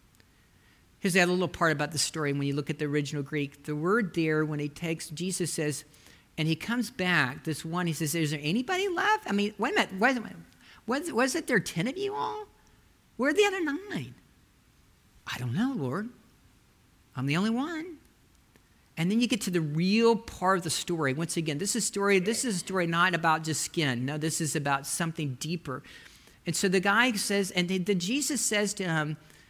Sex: male